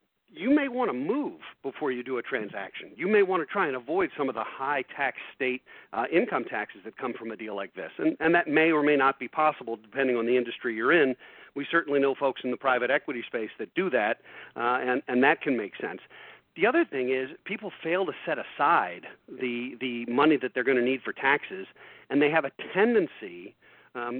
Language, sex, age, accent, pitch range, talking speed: English, male, 50-69, American, 125-160 Hz, 225 wpm